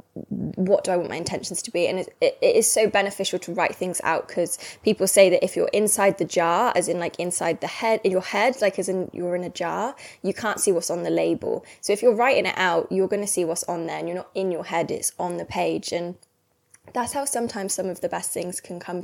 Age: 10-29